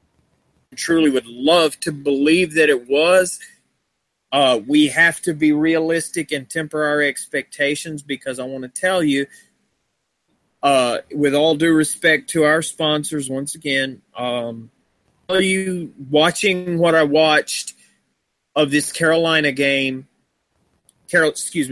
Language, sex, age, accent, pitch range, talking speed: English, male, 30-49, American, 140-170 Hz, 130 wpm